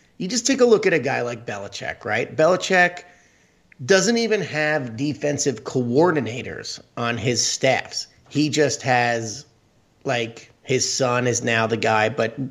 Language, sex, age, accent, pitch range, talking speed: English, male, 30-49, American, 115-145 Hz, 150 wpm